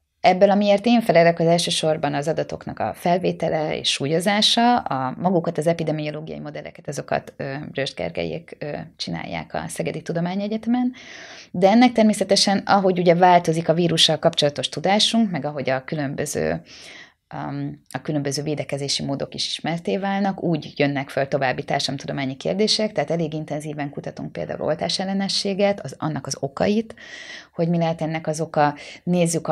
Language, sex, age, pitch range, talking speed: Hungarian, female, 20-39, 140-180 Hz, 140 wpm